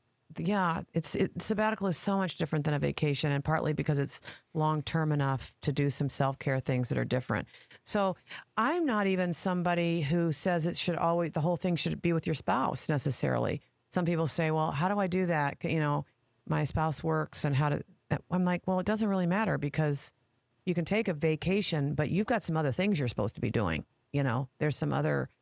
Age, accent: 40-59, American